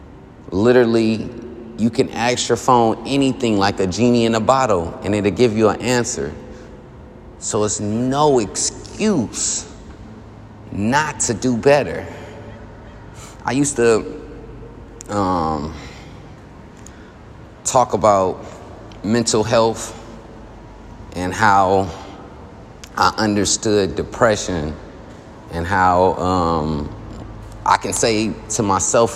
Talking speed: 100 wpm